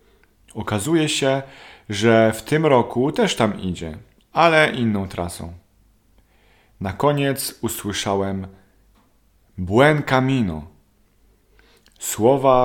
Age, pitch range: 40-59, 100-115 Hz